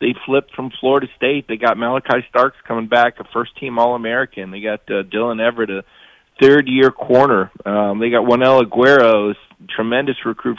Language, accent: English, American